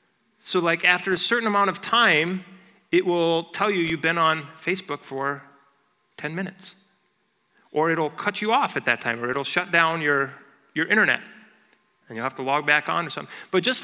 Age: 30-49